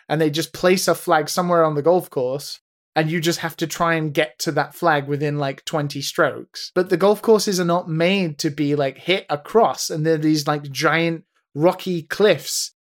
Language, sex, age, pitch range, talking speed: English, male, 20-39, 150-180 Hz, 210 wpm